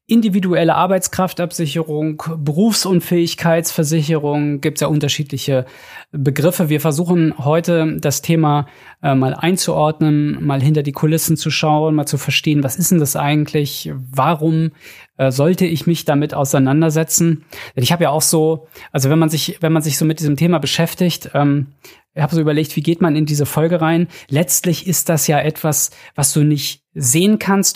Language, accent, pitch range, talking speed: German, German, 145-170 Hz, 160 wpm